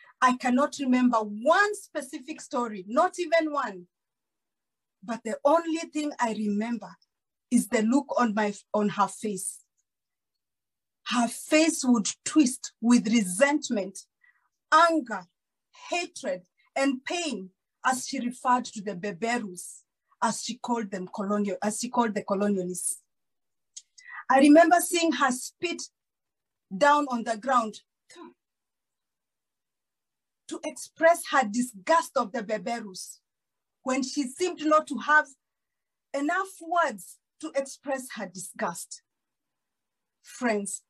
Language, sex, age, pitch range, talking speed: English, female, 40-59, 210-290 Hz, 115 wpm